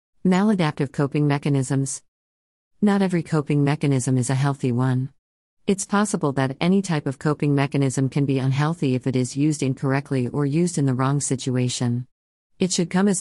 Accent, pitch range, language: American, 130-160 Hz, English